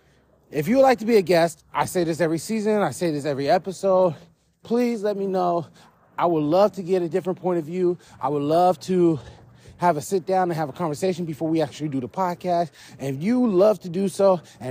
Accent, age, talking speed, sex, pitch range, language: American, 20-39, 235 wpm, male, 150-185 Hz, English